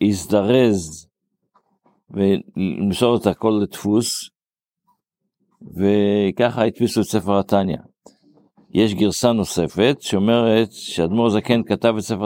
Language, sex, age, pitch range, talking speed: Hebrew, male, 50-69, 100-120 Hz, 95 wpm